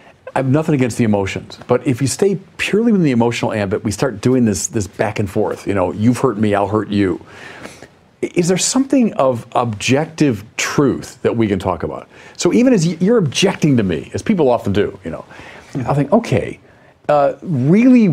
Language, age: English, 50-69